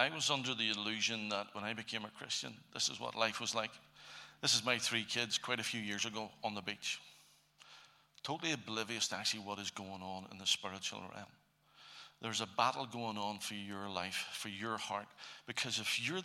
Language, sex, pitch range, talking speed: English, male, 105-120 Hz, 205 wpm